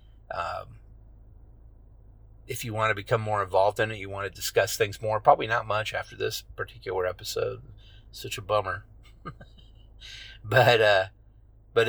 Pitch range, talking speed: 105-125 Hz, 145 wpm